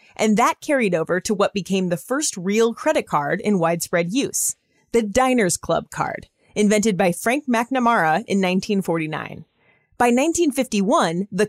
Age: 30-49